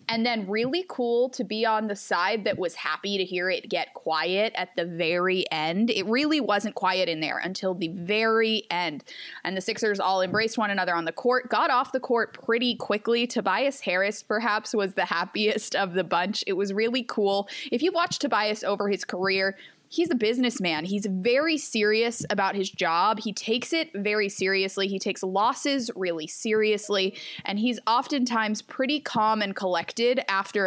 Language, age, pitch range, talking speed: English, 20-39, 185-230 Hz, 185 wpm